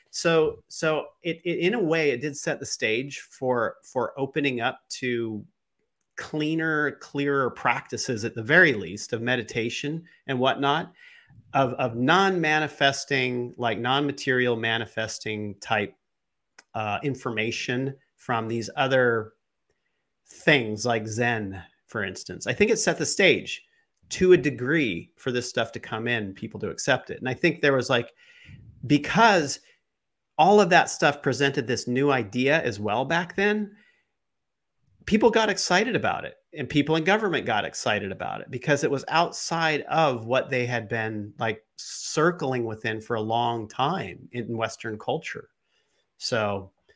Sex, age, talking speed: male, 40-59, 150 wpm